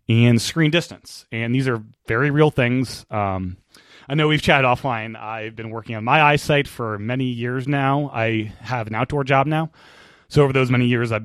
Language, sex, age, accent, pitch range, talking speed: English, male, 30-49, American, 110-140 Hz, 195 wpm